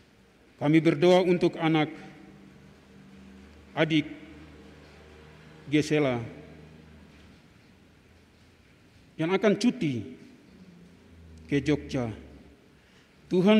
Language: English